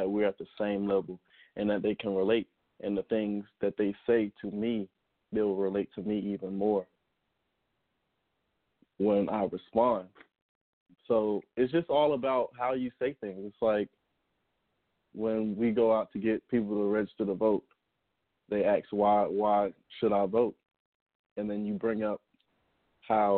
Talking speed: 160 wpm